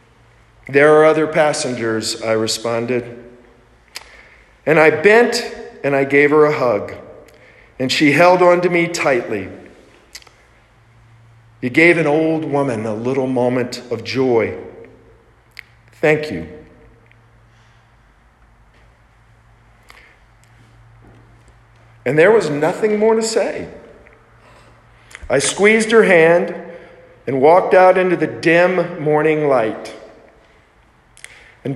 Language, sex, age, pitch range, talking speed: English, male, 50-69, 115-155 Hz, 100 wpm